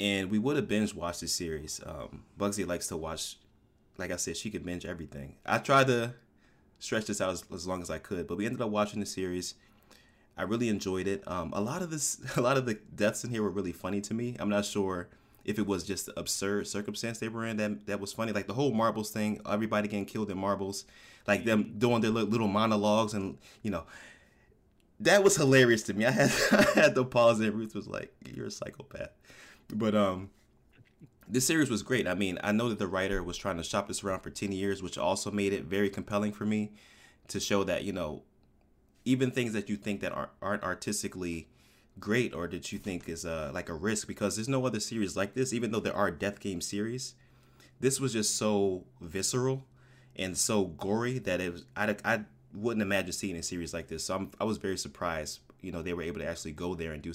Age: 20-39